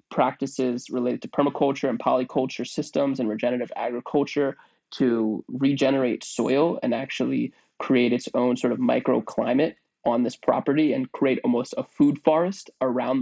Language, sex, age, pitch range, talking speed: English, male, 20-39, 130-145 Hz, 140 wpm